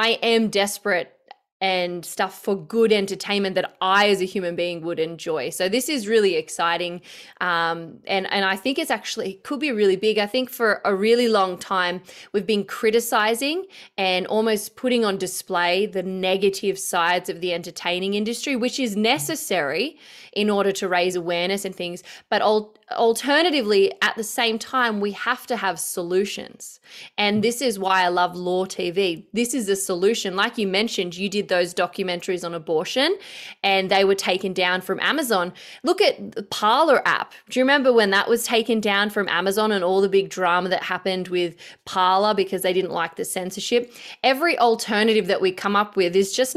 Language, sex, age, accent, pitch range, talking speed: English, female, 20-39, Australian, 185-225 Hz, 185 wpm